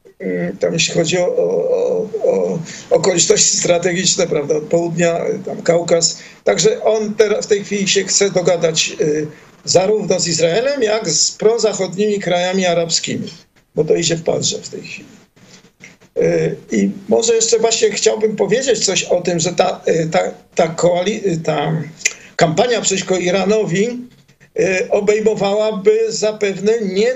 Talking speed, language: 145 wpm, Polish